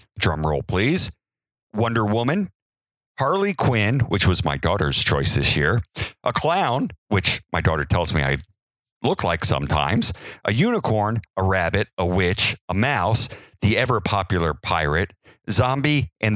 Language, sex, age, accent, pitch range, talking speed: English, male, 50-69, American, 95-130 Hz, 145 wpm